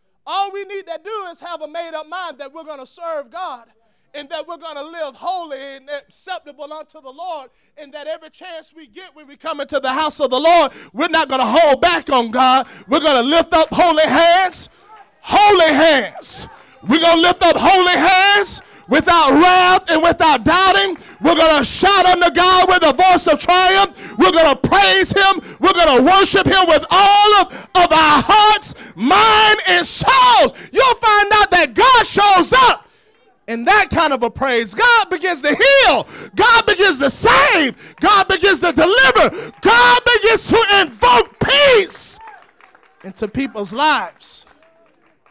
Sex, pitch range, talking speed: male, 295-390 Hz, 180 wpm